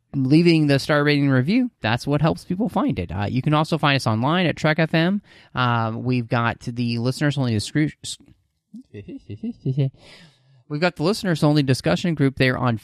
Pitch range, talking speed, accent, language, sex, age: 115-150 Hz, 160 wpm, American, English, male, 30-49